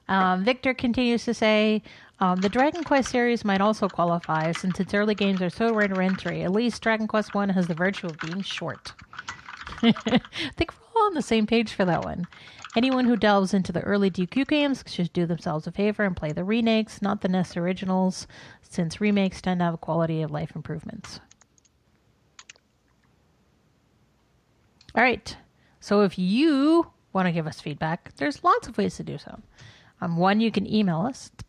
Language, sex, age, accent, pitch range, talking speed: English, female, 30-49, American, 175-225 Hz, 180 wpm